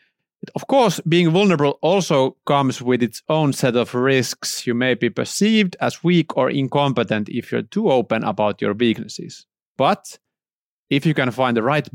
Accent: native